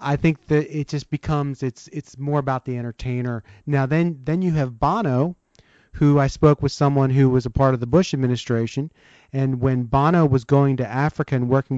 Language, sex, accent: English, male, American